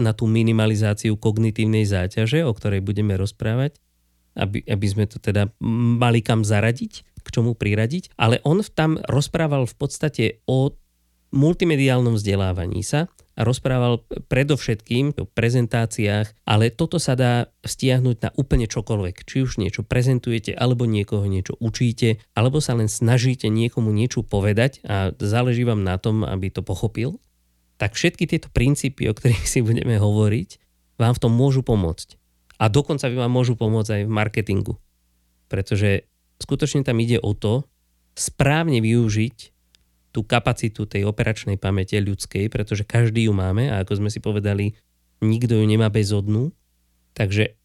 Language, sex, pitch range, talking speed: Slovak, male, 100-125 Hz, 145 wpm